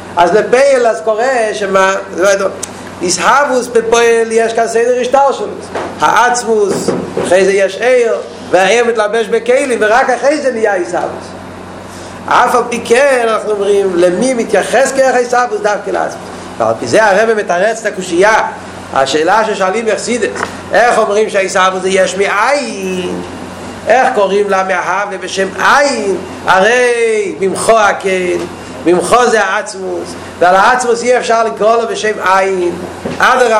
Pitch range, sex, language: 190-240 Hz, male, Hebrew